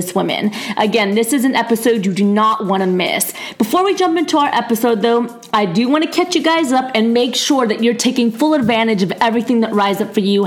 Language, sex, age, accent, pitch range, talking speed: English, female, 30-49, American, 210-260 Hz, 240 wpm